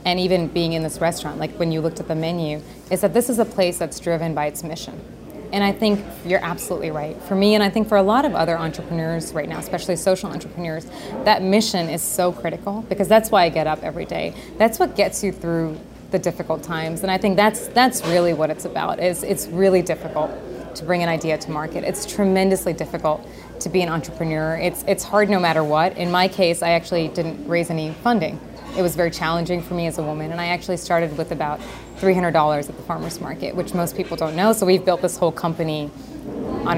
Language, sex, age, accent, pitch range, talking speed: English, female, 20-39, American, 165-195 Hz, 230 wpm